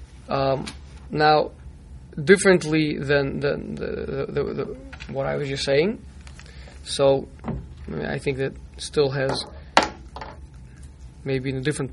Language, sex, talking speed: English, male, 130 wpm